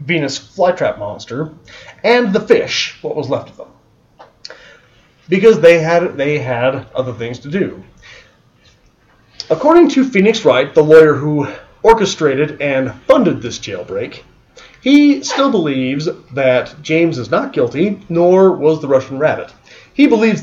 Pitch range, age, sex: 130-175 Hz, 30-49, male